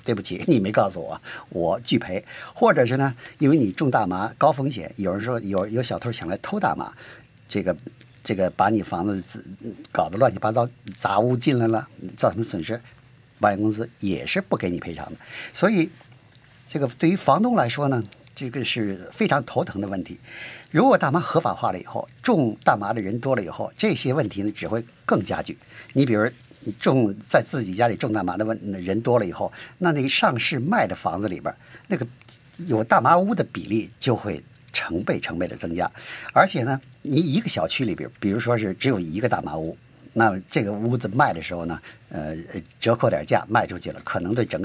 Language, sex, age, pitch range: Chinese, male, 50-69, 105-135 Hz